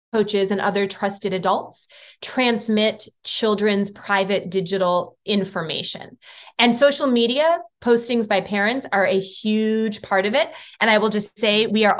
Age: 20-39